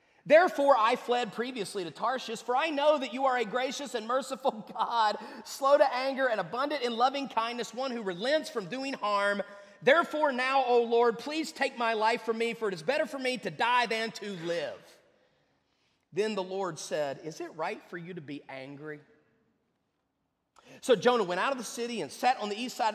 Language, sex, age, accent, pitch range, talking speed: English, male, 30-49, American, 190-245 Hz, 200 wpm